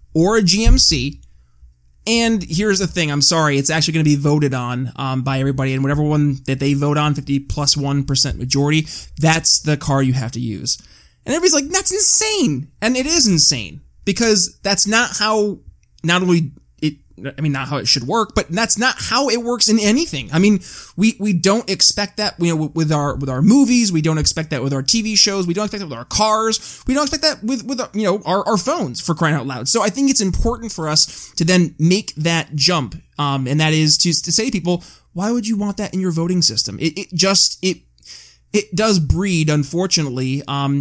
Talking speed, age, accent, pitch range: 220 wpm, 20-39, American, 145-205 Hz